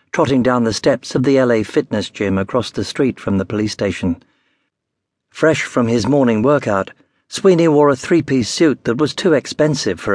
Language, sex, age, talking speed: English, male, 60-79, 185 wpm